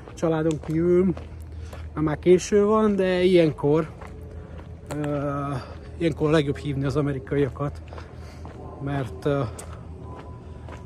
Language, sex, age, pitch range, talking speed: Hungarian, male, 30-49, 115-175 Hz, 90 wpm